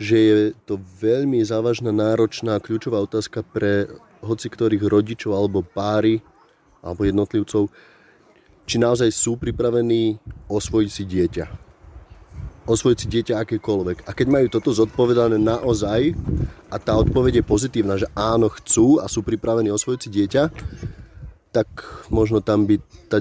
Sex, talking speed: male, 135 wpm